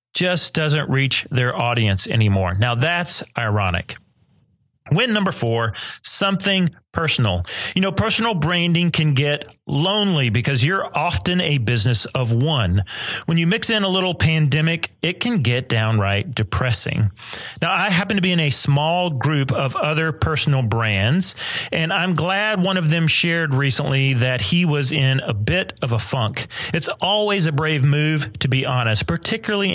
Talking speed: 160 wpm